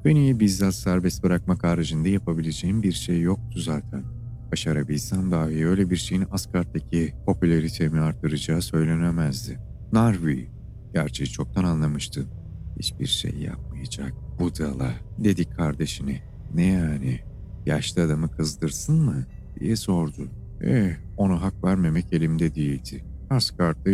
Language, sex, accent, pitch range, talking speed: Turkish, male, native, 75-95 Hz, 110 wpm